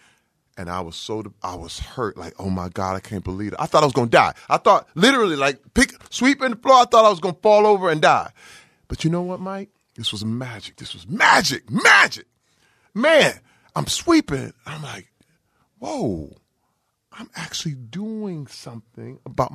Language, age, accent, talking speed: English, 30-49, American, 195 wpm